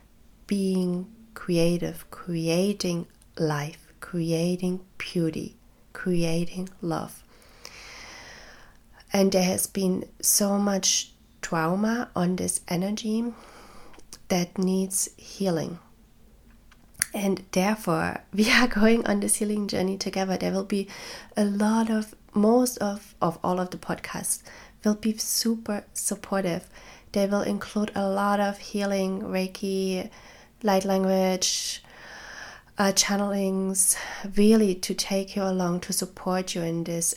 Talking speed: 115 wpm